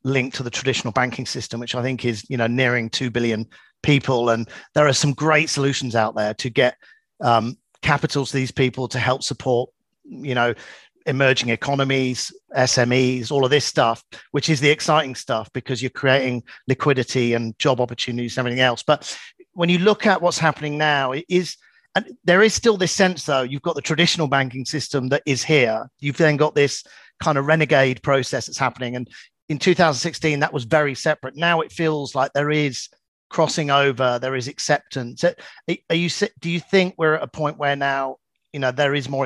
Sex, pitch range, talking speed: male, 125-150 Hz, 195 wpm